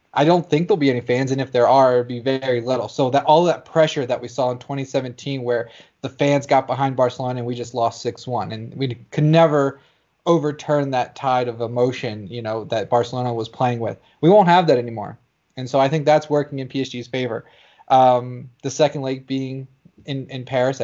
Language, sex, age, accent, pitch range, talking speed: English, male, 20-39, American, 120-145 Hz, 220 wpm